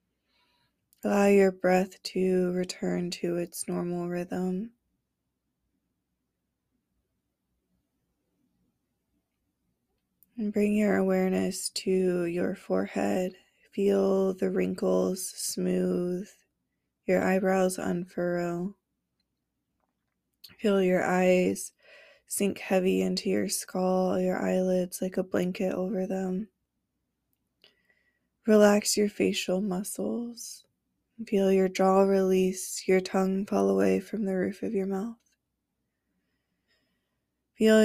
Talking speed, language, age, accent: 90 wpm, English, 20-39, American